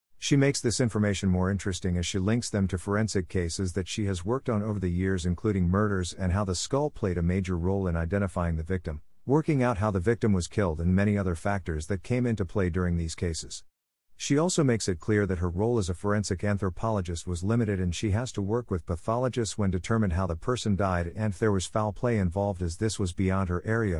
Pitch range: 90-115 Hz